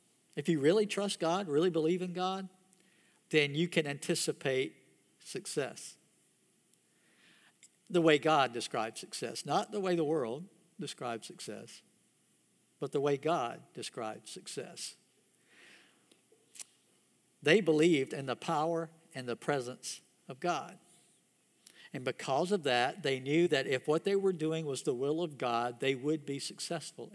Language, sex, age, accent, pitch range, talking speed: English, male, 60-79, American, 140-180 Hz, 140 wpm